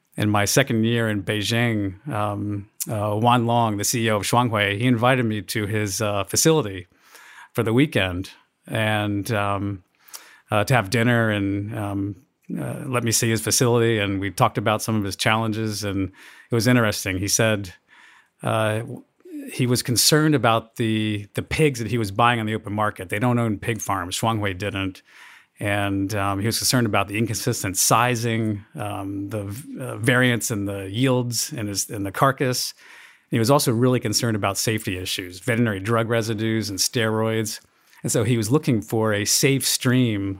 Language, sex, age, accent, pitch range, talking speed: English, male, 50-69, American, 100-125 Hz, 175 wpm